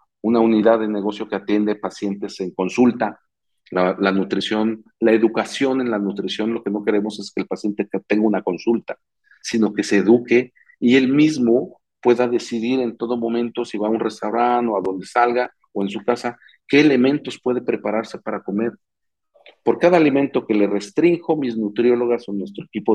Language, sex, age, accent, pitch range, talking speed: Spanish, male, 40-59, Mexican, 105-125 Hz, 185 wpm